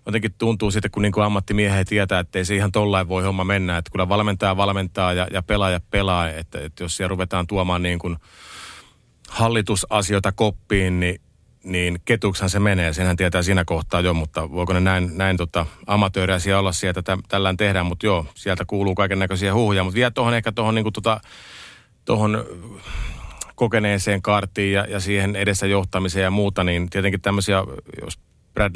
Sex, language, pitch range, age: male, Finnish, 90-100 Hz, 30-49